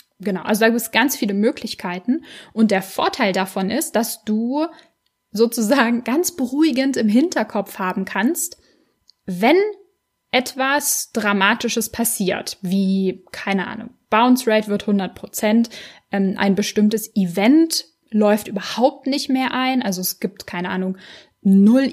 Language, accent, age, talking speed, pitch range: German, German, 10-29, 130 wpm, 200-255 Hz